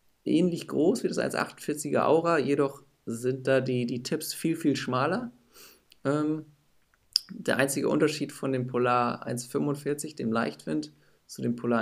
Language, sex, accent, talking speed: German, male, German, 135 wpm